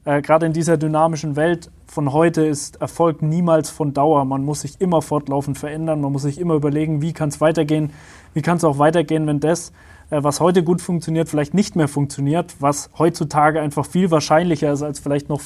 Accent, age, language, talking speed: German, 20-39, German, 200 wpm